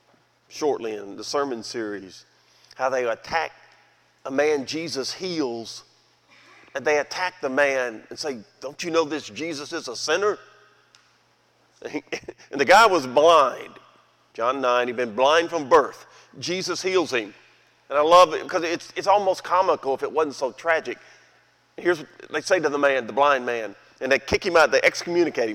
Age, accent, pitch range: 40-59, American, 140-190 Hz